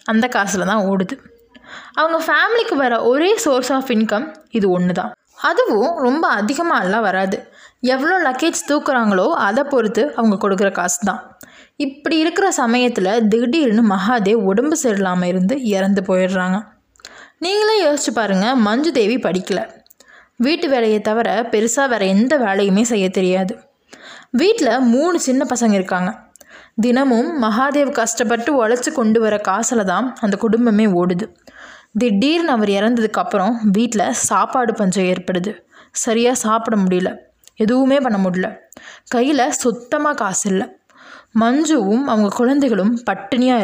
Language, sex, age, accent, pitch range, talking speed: Tamil, female, 20-39, native, 200-265 Hz, 120 wpm